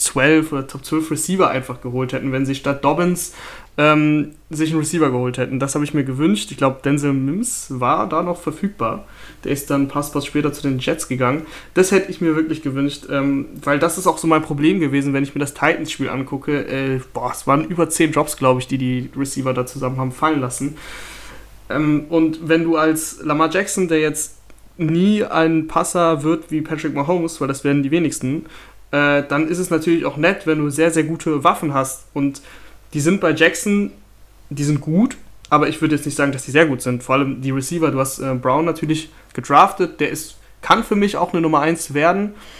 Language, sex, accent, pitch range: German, male, German, 140-160 Hz